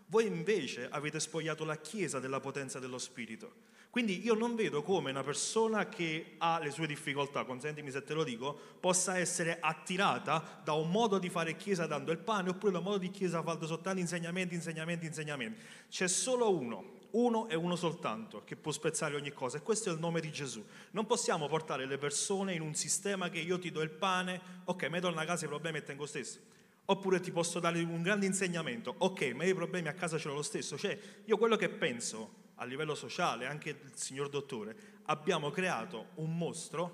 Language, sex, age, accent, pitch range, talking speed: Italian, male, 30-49, native, 155-200 Hz, 205 wpm